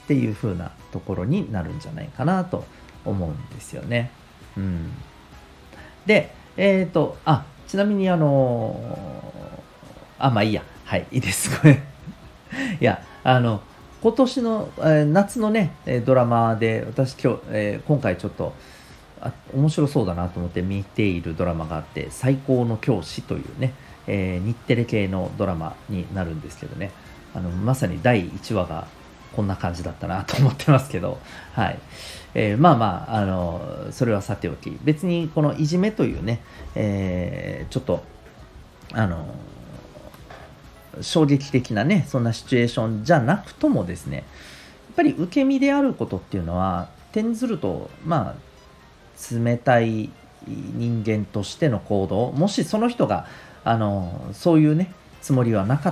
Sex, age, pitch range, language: male, 40-59, 95-150 Hz, Japanese